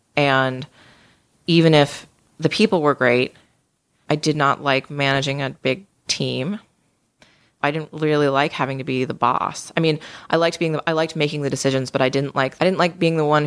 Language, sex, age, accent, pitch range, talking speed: English, female, 20-39, American, 135-155 Hz, 200 wpm